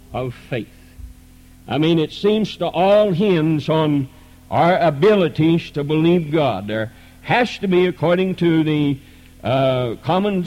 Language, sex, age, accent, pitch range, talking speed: English, male, 60-79, American, 125-185 Hz, 140 wpm